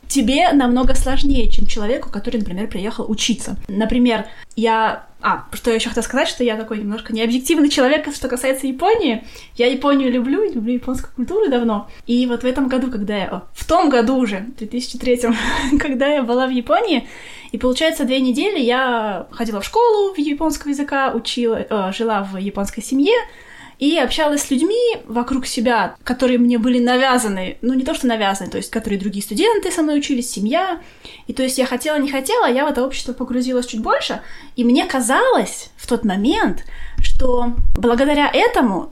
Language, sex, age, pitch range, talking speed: Russian, female, 20-39, 230-280 Hz, 180 wpm